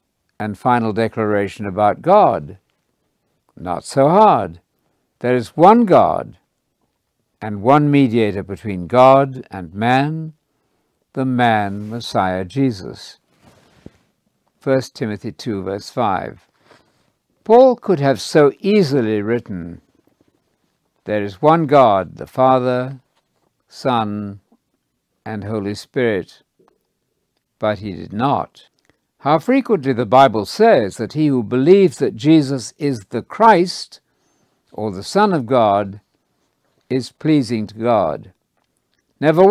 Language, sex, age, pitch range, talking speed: English, male, 60-79, 105-150 Hz, 110 wpm